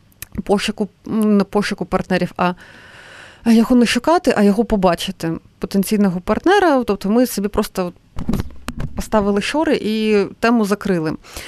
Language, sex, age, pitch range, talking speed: Ukrainian, female, 30-49, 190-235 Hz, 120 wpm